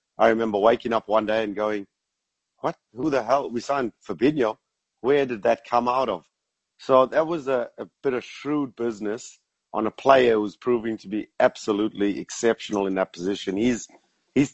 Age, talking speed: 30-49, 180 wpm